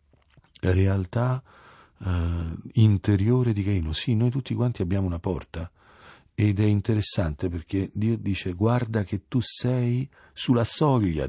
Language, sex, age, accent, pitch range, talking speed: Italian, male, 50-69, native, 90-115 Hz, 130 wpm